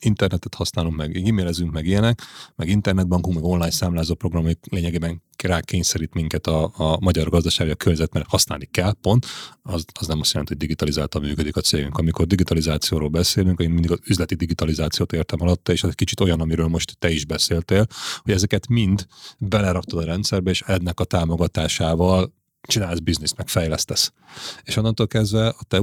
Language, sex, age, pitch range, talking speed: Hungarian, male, 30-49, 80-100 Hz, 170 wpm